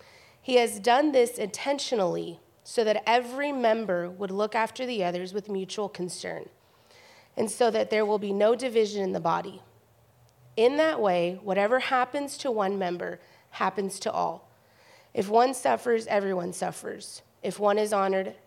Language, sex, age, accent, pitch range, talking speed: English, female, 30-49, American, 165-210 Hz, 155 wpm